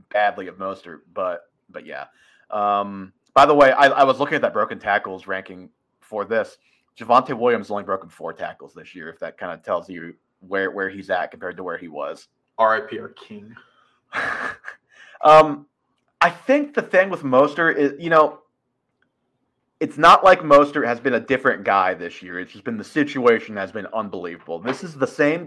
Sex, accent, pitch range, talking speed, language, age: male, American, 115-145 Hz, 190 wpm, English, 30-49